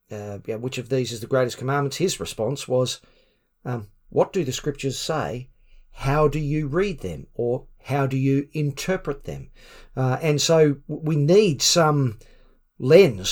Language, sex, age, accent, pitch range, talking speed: English, male, 50-69, Australian, 125-150 Hz, 160 wpm